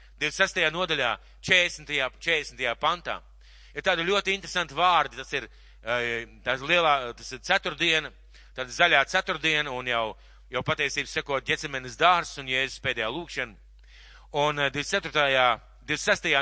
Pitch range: 125-180 Hz